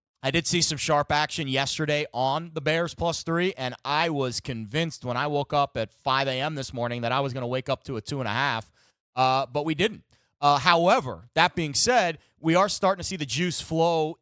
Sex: male